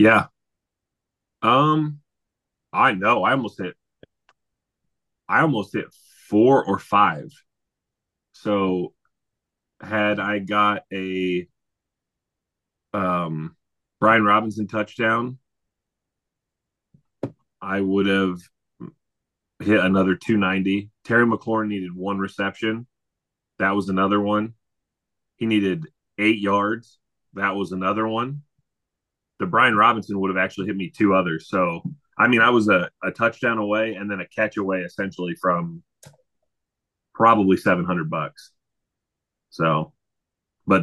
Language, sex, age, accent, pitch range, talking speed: English, male, 30-49, American, 90-110 Hz, 110 wpm